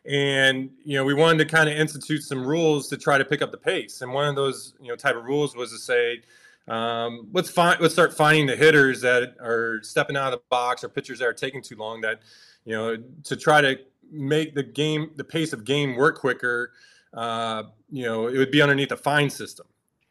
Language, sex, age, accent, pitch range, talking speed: English, male, 20-39, American, 125-155 Hz, 230 wpm